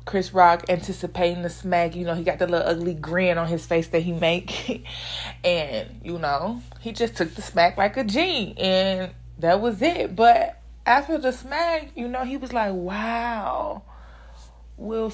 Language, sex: English, female